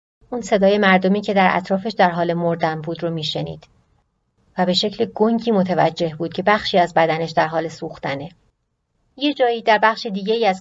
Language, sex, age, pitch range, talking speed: Persian, female, 30-49, 170-215 Hz, 175 wpm